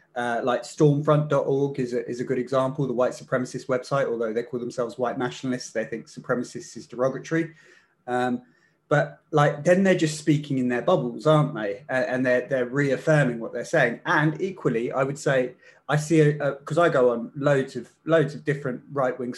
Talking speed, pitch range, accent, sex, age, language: 185 wpm, 125-150 Hz, British, male, 30-49, English